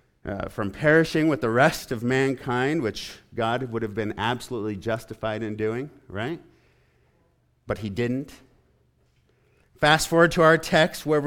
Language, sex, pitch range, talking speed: English, male, 105-160 Hz, 145 wpm